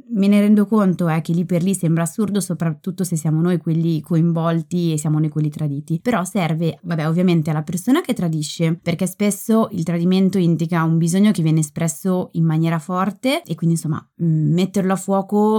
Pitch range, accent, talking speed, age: 165-200 Hz, native, 195 wpm, 20-39